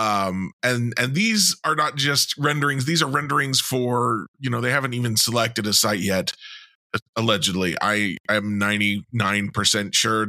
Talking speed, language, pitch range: 155 wpm, English, 110-160 Hz